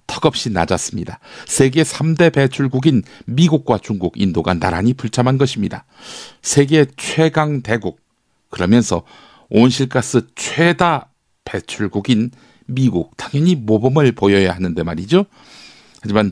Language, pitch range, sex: Korean, 100-135 Hz, male